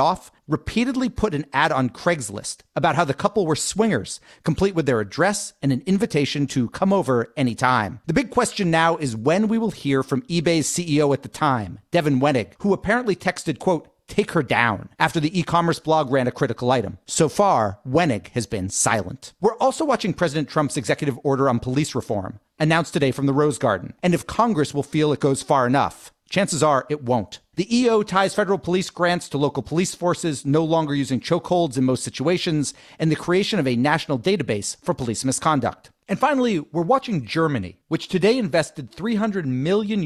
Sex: male